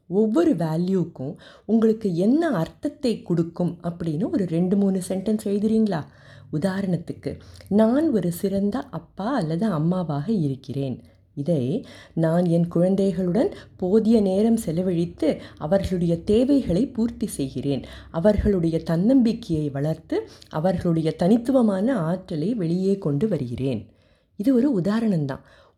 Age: 20-39